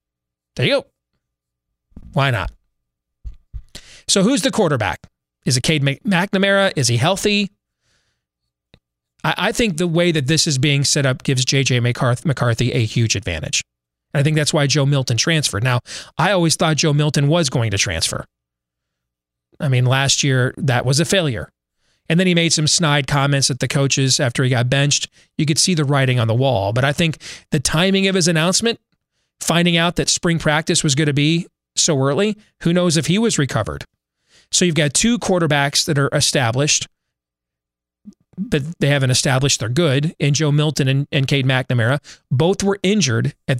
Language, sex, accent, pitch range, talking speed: English, male, American, 125-165 Hz, 180 wpm